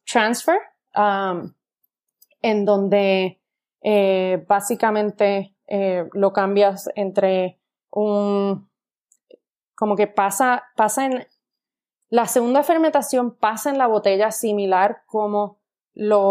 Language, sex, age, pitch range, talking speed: Spanish, female, 20-39, 190-215 Hz, 95 wpm